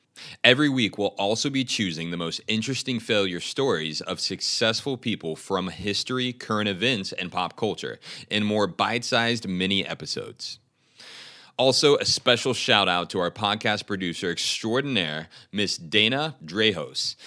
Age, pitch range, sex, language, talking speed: 30-49, 95-125 Hz, male, English, 135 wpm